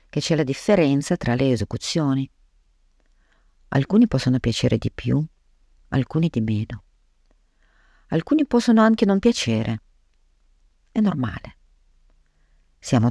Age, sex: 50-69, female